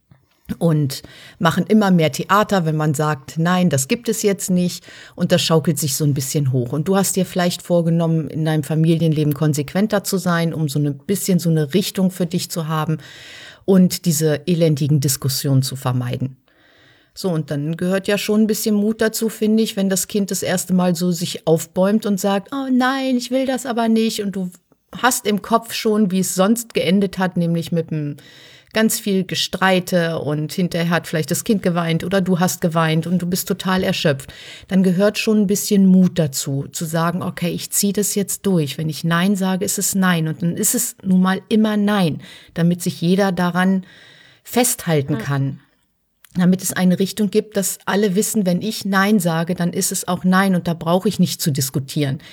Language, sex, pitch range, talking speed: German, female, 160-195 Hz, 200 wpm